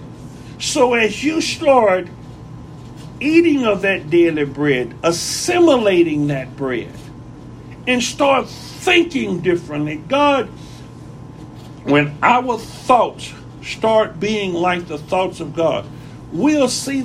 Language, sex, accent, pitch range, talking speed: English, male, American, 165-235 Hz, 100 wpm